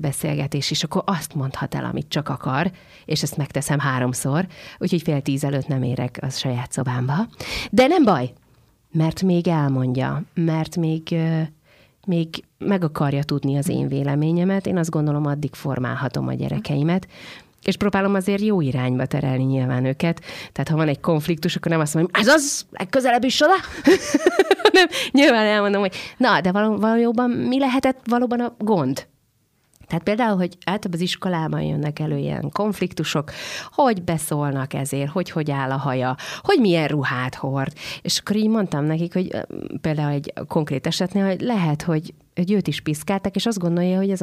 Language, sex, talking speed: Hungarian, female, 170 wpm